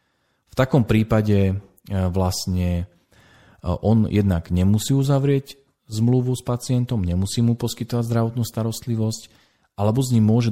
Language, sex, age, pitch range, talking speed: Slovak, male, 40-59, 95-115 Hz, 115 wpm